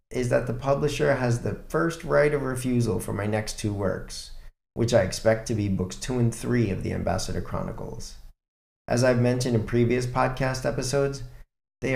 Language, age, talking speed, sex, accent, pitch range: English, 40-59, 180 wpm, male, American, 105-145 Hz